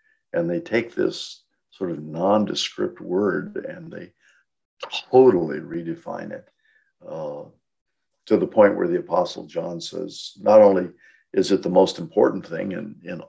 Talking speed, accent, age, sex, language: 145 wpm, American, 60-79, male, English